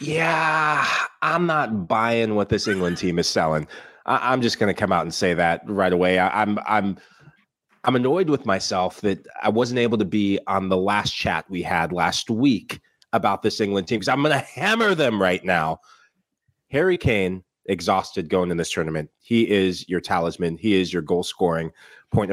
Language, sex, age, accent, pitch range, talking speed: English, male, 30-49, American, 95-125 Hz, 190 wpm